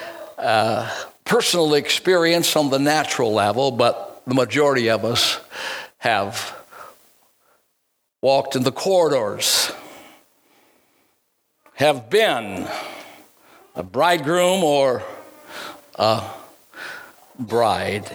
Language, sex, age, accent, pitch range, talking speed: English, male, 60-79, American, 135-225 Hz, 80 wpm